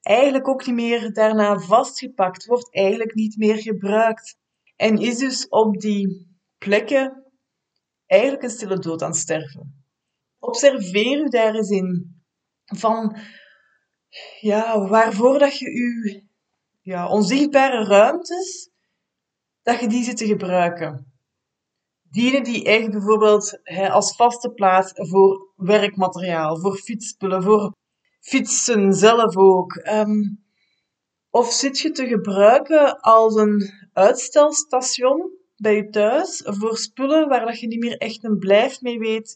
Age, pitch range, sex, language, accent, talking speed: 20-39, 200-255 Hz, female, Dutch, Dutch, 130 wpm